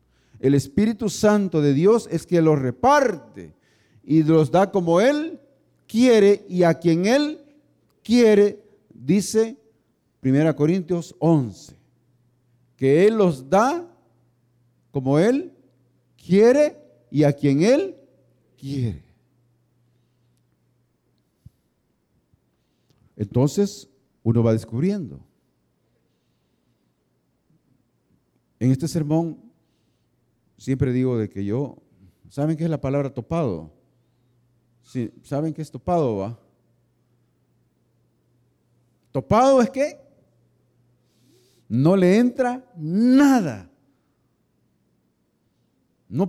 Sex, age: male, 50-69